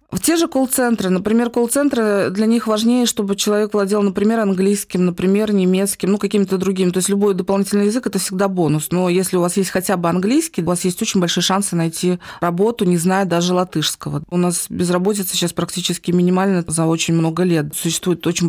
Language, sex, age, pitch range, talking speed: Russian, female, 20-39, 170-200 Hz, 200 wpm